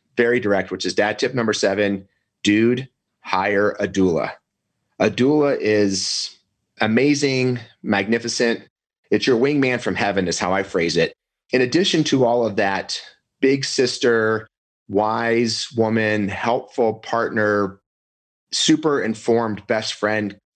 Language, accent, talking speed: English, American, 125 wpm